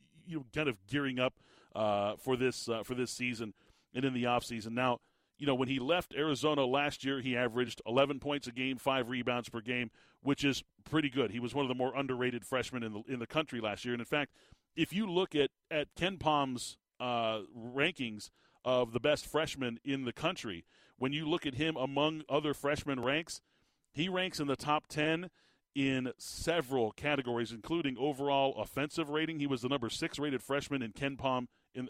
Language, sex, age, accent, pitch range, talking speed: English, male, 40-59, American, 125-145 Hz, 200 wpm